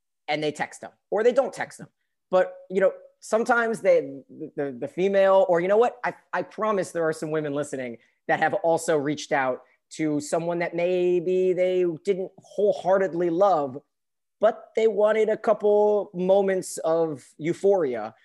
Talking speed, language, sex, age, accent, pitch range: 165 wpm, English, male, 30-49, American, 150-185 Hz